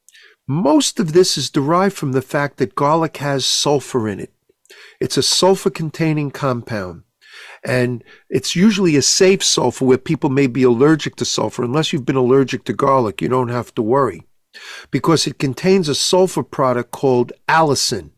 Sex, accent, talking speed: male, American, 165 wpm